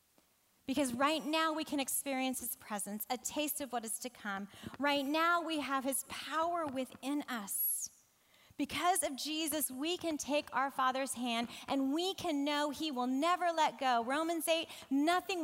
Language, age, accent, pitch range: English, 30-49, American, 230-300 Hz